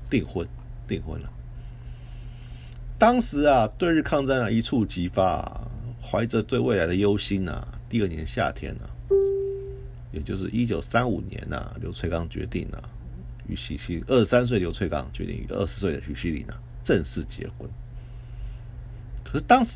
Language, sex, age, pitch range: Chinese, male, 50-69, 90-120 Hz